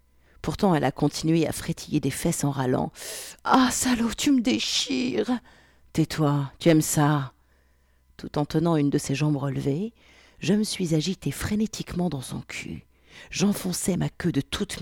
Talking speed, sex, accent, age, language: 175 wpm, female, French, 50-69, French